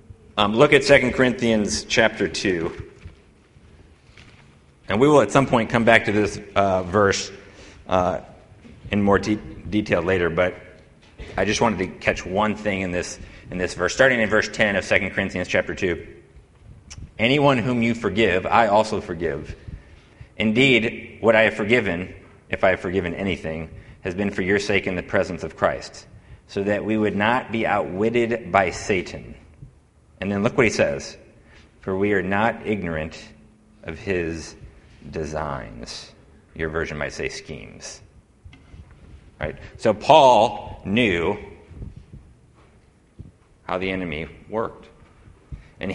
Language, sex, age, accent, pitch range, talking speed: English, male, 30-49, American, 90-110 Hz, 145 wpm